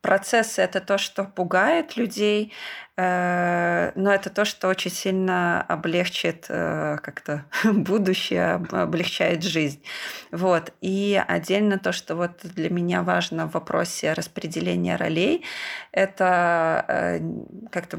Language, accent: Russian, native